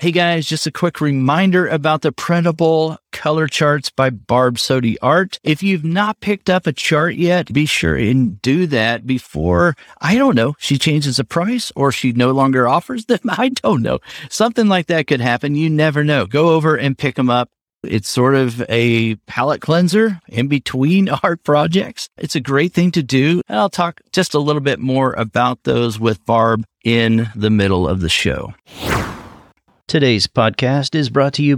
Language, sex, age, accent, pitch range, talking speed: English, male, 40-59, American, 115-160 Hz, 185 wpm